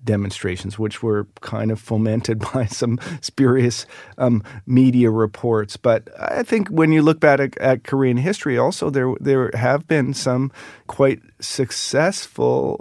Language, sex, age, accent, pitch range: Korean, male, 40-59, American, 115-135 Hz